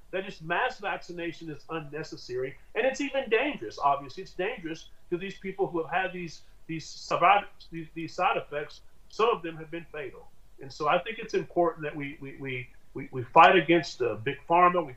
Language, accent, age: English, American, 40-59